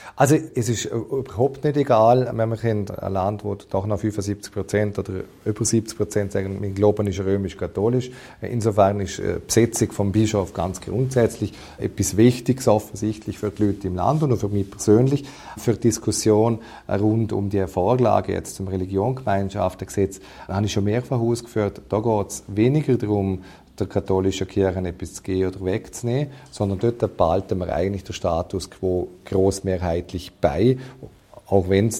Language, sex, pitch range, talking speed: German, male, 95-115 Hz, 160 wpm